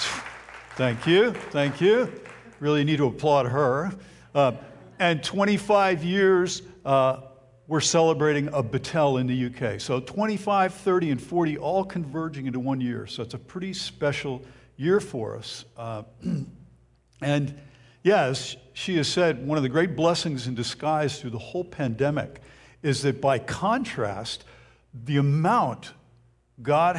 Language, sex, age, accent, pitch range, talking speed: English, male, 60-79, American, 120-165 Hz, 140 wpm